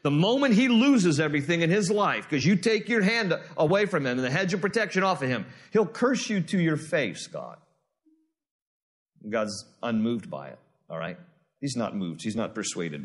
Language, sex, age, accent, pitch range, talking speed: English, male, 40-59, American, 150-215 Hz, 200 wpm